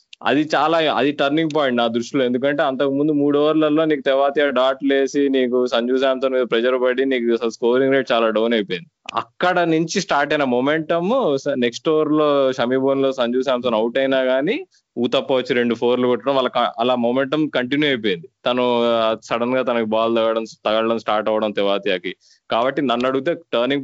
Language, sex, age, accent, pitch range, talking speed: Telugu, male, 20-39, native, 120-150 Hz, 170 wpm